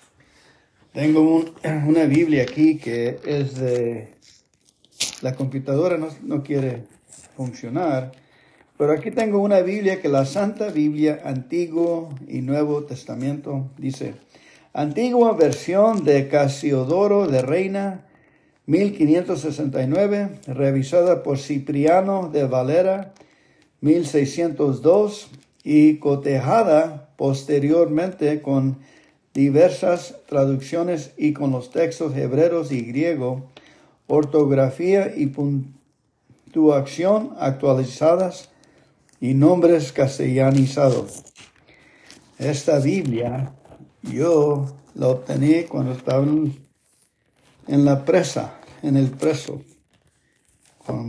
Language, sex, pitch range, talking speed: English, male, 135-165 Hz, 85 wpm